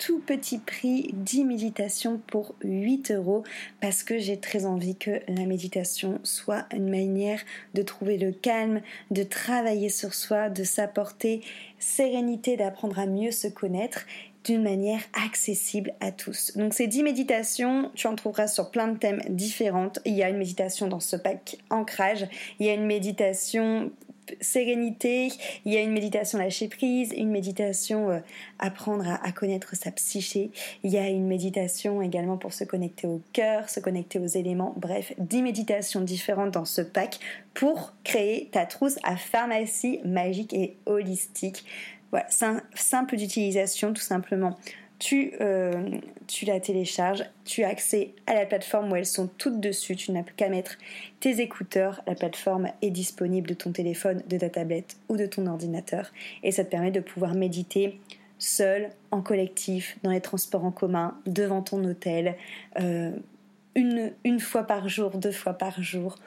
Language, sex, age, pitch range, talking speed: French, female, 20-39, 190-220 Hz, 165 wpm